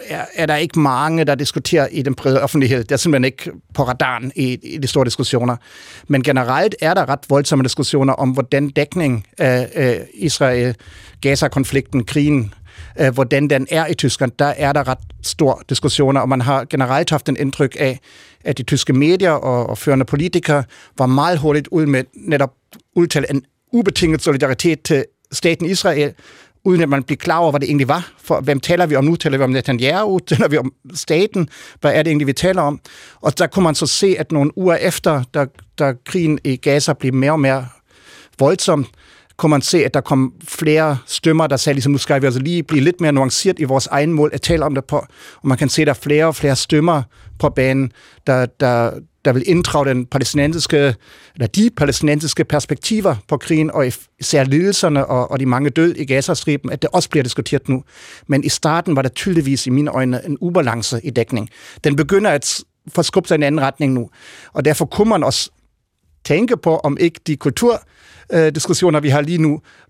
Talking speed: 200 wpm